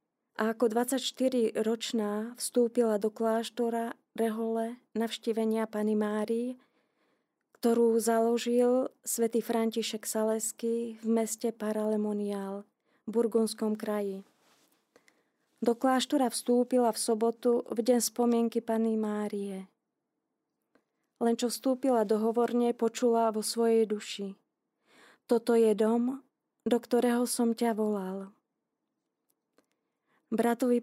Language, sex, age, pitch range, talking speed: Slovak, female, 20-39, 220-240 Hz, 95 wpm